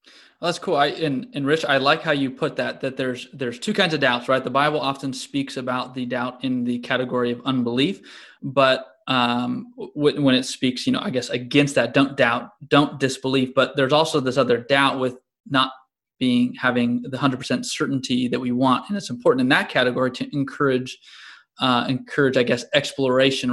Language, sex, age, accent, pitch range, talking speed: English, male, 20-39, American, 125-150 Hz, 200 wpm